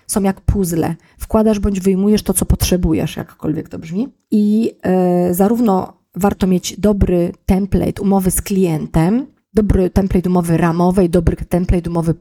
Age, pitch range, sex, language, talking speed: 30-49, 170-205 Hz, female, Polish, 145 wpm